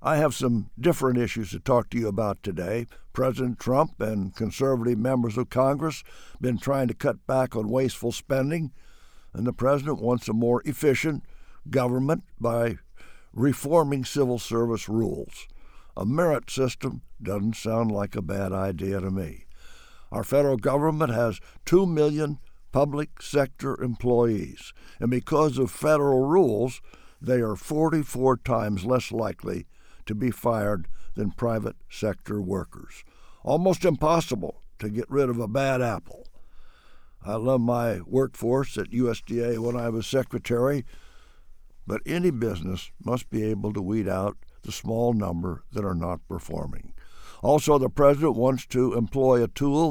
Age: 60-79